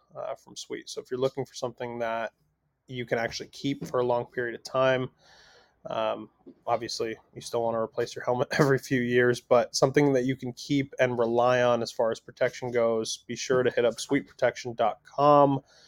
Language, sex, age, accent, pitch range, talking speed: English, male, 20-39, American, 120-140 Hz, 195 wpm